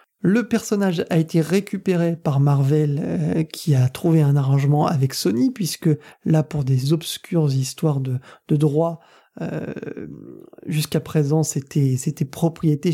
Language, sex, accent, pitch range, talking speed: French, male, French, 150-195 Hz, 140 wpm